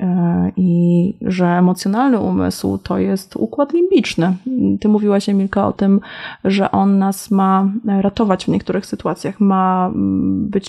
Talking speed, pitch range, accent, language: 130 wpm, 190-230 Hz, native, Polish